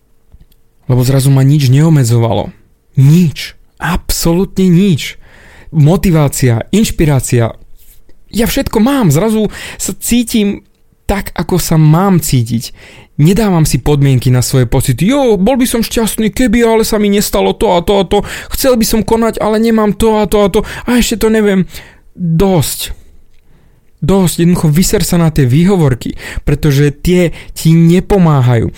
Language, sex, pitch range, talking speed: Slovak, male, 135-195 Hz, 145 wpm